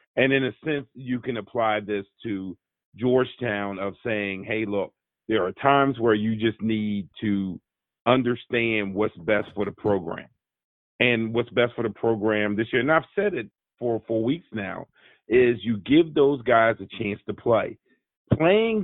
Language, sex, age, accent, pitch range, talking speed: English, male, 40-59, American, 110-140 Hz, 170 wpm